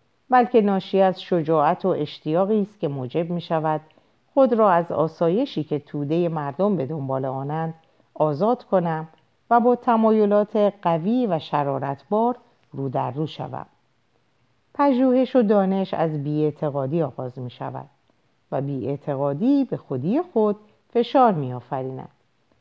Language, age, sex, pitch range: Persian, 50-69, female, 140-205 Hz